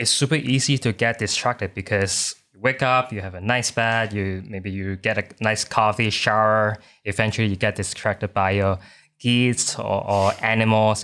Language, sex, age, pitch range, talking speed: English, male, 20-39, 100-120 Hz, 180 wpm